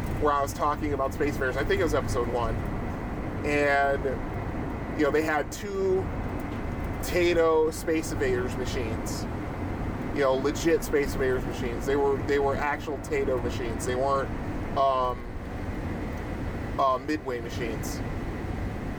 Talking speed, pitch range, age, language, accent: 135 wpm, 105-150 Hz, 30-49, English, American